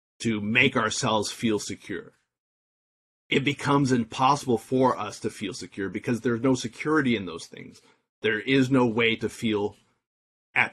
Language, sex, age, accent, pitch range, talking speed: English, male, 30-49, American, 105-130 Hz, 150 wpm